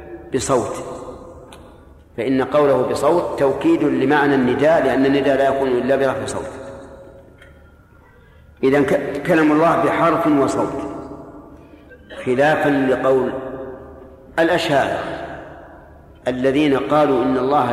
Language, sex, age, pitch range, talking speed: Arabic, male, 50-69, 125-145 Hz, 85 wpm